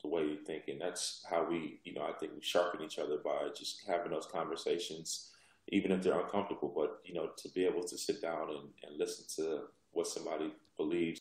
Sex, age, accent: male, 20-39, American